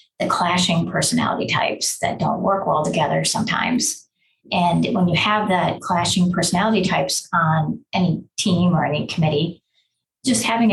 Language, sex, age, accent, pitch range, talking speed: English, female, 30-49, American, 165-200 Hz, 145 wpm